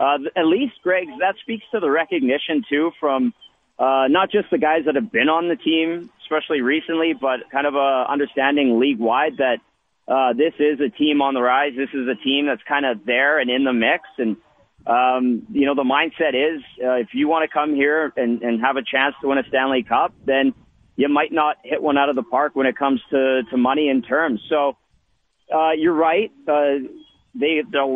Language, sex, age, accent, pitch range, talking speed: English, male, 40-59, American, 130-160 Hz, 215 wpm